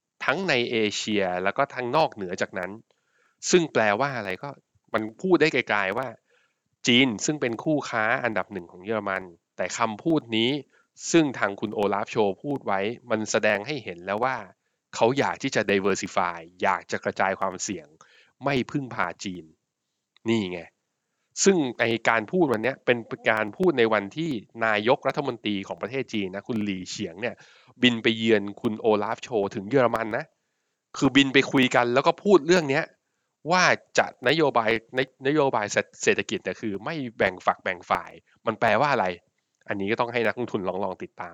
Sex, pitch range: male, 100-135 Hz